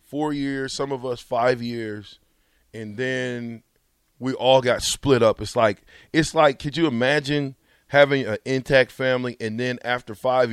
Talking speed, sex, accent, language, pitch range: 165 wpm, male, American, English, 115-155 Hz